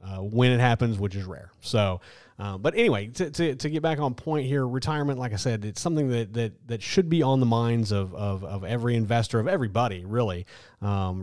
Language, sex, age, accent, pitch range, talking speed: English, male, 30-49, American, 100-125 Hz, 225 wpm